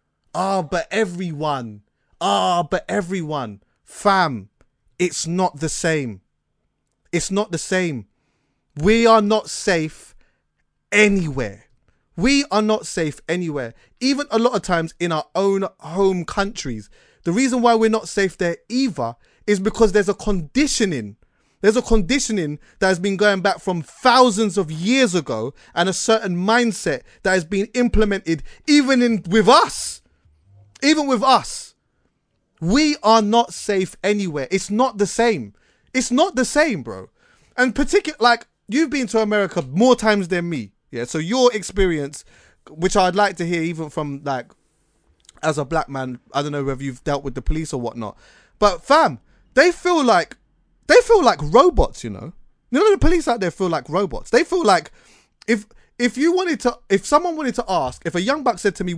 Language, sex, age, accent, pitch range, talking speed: English, male, 30-49, British, 155-235 Hz, 175 wpm